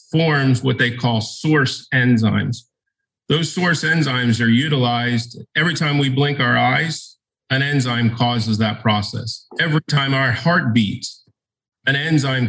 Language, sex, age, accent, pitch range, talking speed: English, male, 40-59, American, 120-150 Hz, 140 wpm